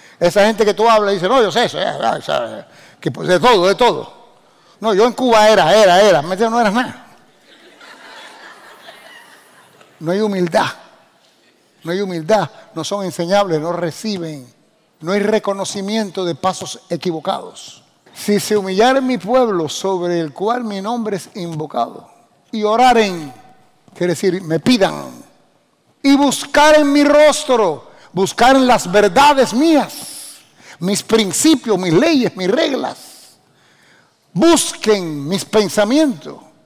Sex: male